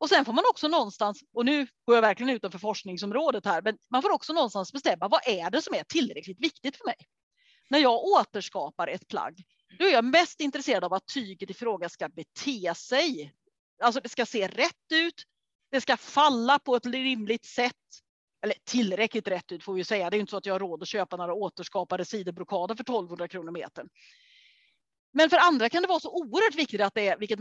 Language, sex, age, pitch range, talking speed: Swedish, female, 30-49, 200-310 Hz, 210 wpm